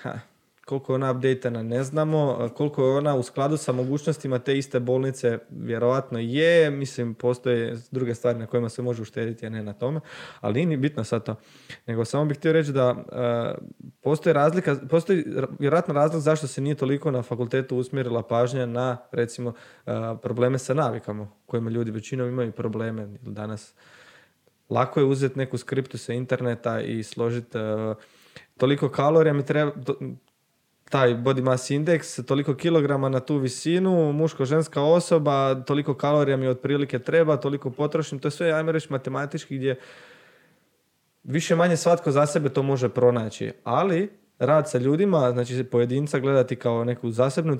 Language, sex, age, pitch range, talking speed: Croatian, male, 20-39, 120-145 Hz, 160 wpm